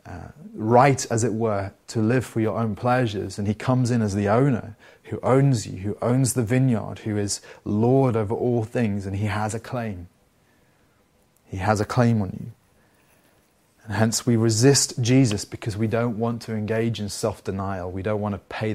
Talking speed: 190 wpm